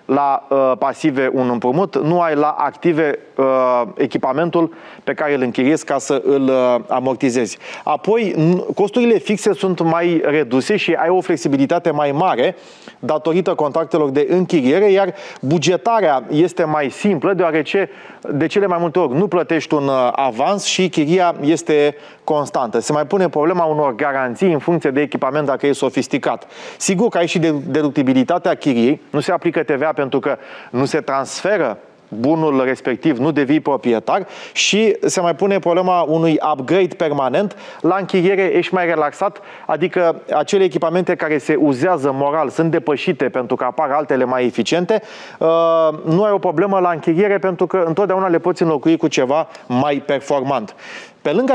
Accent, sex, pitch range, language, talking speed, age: native, male, 140-180 Hz, Romanian, 160 wpm, 30-49